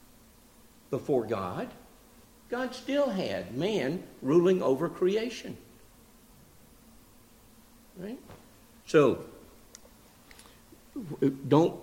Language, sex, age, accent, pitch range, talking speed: English, male, 60-79, American, 105-135 Hz, 60 wpm